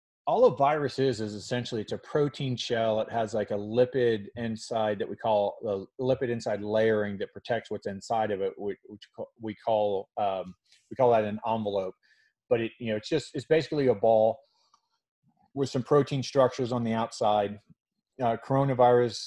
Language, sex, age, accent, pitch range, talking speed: English, male, 30-49, American, 110-130 Hz, 180 wpm